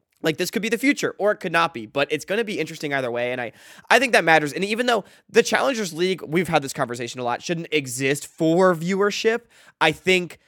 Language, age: English, 20-39